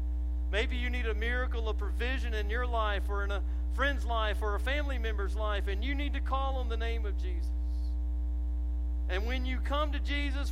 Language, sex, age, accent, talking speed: English, male, 50-69, American, 205 wpm